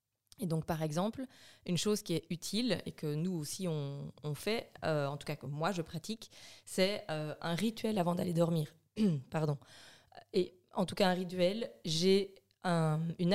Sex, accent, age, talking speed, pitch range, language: female, French, 20-39, 185 wpm, 155-195 Hz, French